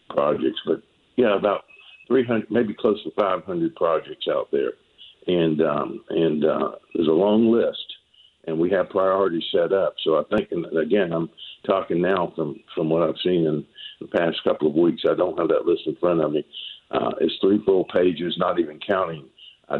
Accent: American